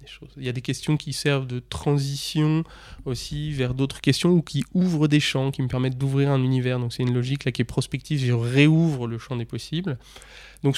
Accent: French